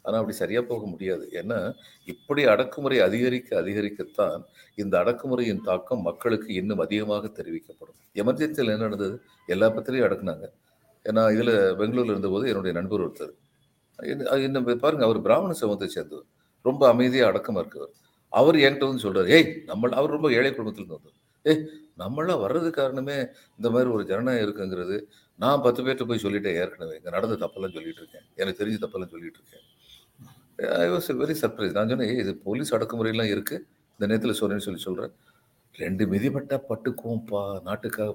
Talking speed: 150 wpm